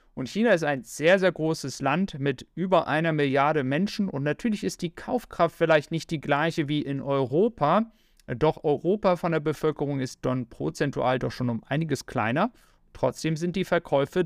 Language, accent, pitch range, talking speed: German, German, 140-170 Hz, 175 wpm